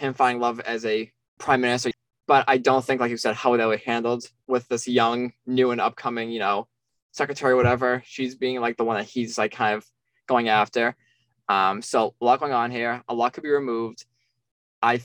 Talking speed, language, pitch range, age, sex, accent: 215 wpm, English, 115-130 Hz, 20-39, male, American